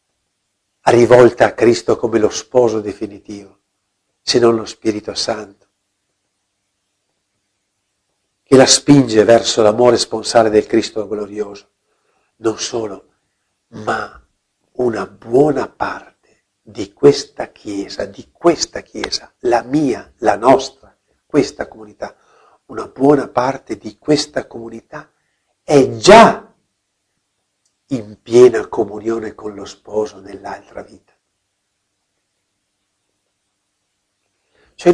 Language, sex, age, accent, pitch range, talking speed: Italian, male, 50-69, native, 100-145 Hz, 95 wpm